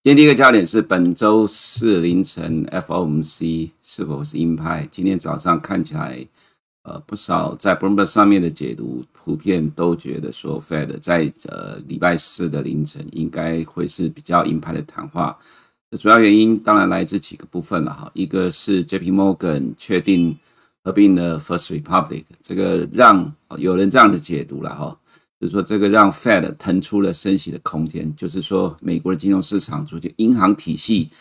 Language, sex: Chinese, male